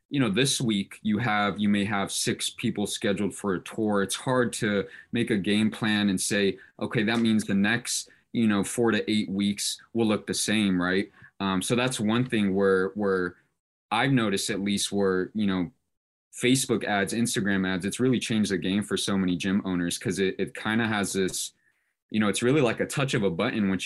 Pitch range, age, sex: 95-110 Hz, 20-39, male